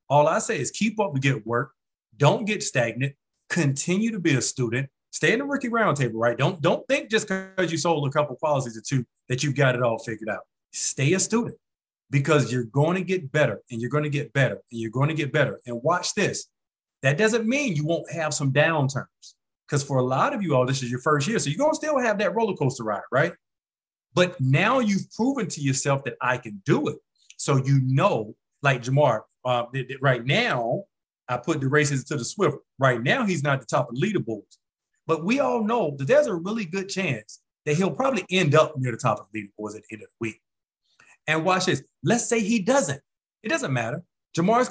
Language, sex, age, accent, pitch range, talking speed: English, male, 30-49, American, 130-185 Hz, 230 wpm